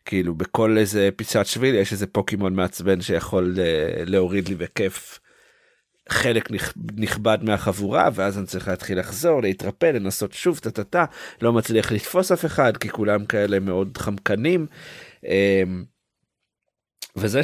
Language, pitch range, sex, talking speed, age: Hebrew, 95-120 Hz, male, 130 wpm, 50-69